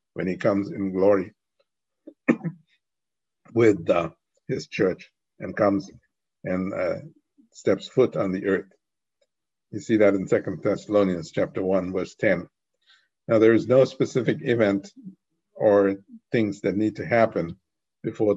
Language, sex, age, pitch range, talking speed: English, male, 50-69, 95-110 Hz, 135 wpm